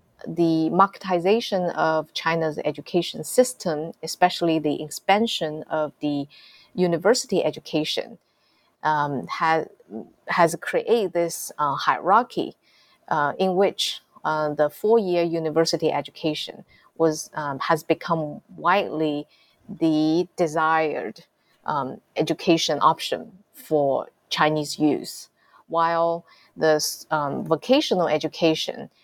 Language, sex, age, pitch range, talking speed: English, female, 30-49, 155-180 Hz, 95 wpm